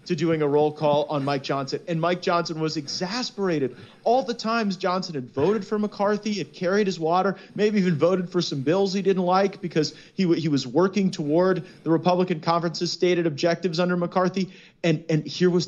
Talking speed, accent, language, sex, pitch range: 200 wpm, American, English, male, 145-185 Hz